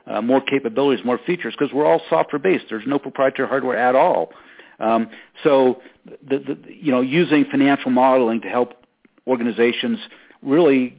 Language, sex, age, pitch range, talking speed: English, male, 50-69, 110-135 Hz, 155 wpm